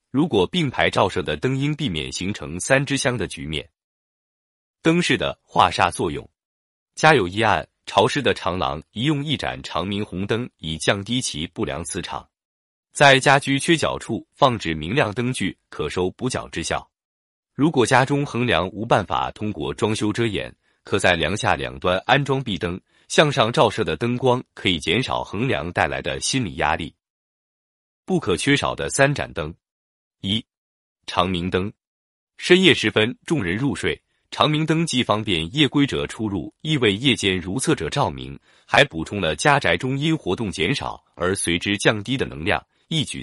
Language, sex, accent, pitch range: Chinese, male, native, 90-140 Hz